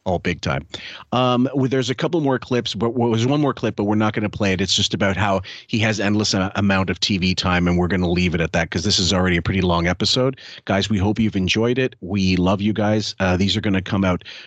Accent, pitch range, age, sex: American, 90-110 Hz, 40-59, male